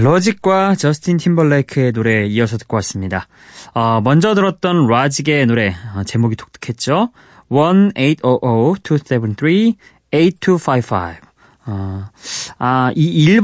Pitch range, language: 110-165 Hz, Korean